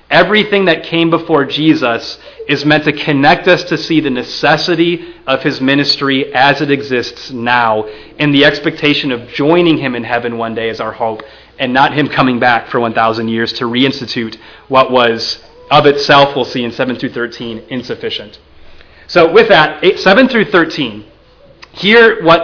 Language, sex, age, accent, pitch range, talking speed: English, male, 30-49, American, 125-170 Hz, 170 wpm